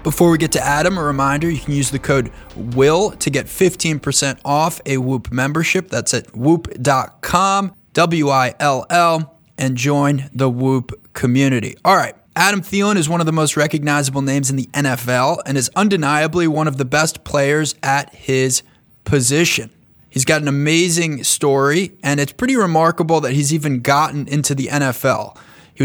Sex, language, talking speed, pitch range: male, English, 165 wpm, 135-165 Hz